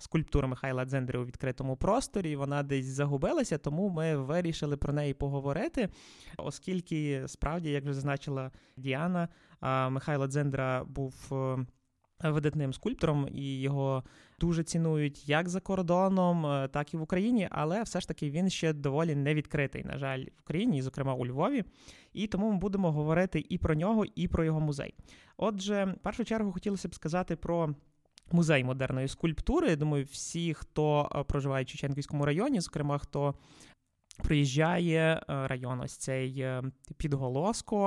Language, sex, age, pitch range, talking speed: Ukrainian, male, 20-39, 140-175 Hz, 140 wpm